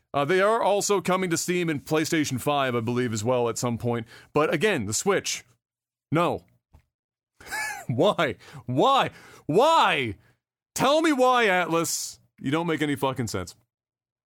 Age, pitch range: 30-49, 125-190 Hz